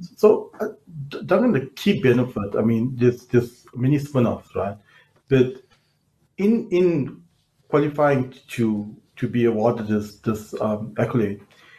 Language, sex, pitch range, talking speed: English, male, 115-145 Hz, 125 wpm